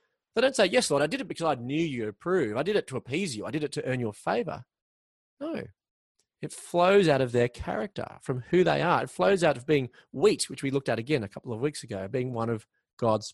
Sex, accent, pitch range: male, Australian, 115-160 Hz